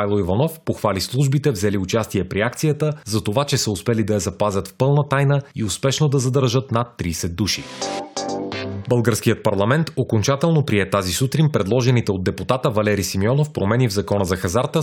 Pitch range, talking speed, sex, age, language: 105-140 Hz, 170 wpm, male, 30-49, Bulgarian